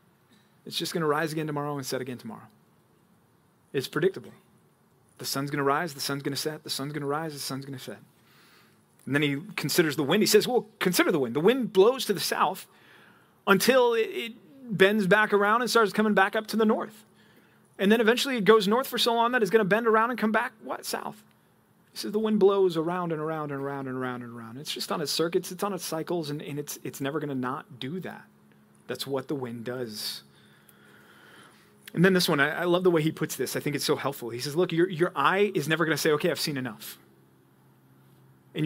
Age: 30-49